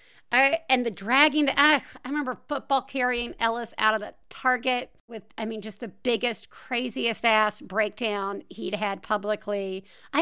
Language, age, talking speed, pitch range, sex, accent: English, 50-69, 160 wpm, 185-260 Hz, female, American